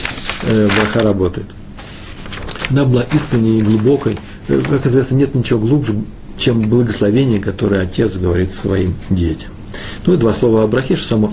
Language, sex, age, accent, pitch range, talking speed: Russian, male, 40-59, native, 100-135 Hz, 125 wpm